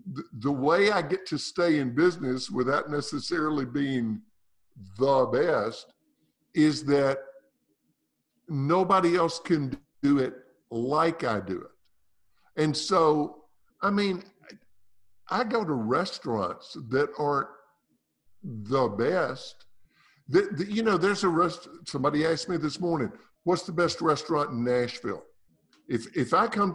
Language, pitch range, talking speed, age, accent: English, 135-190 Hz, 125 wpm, 50-69, American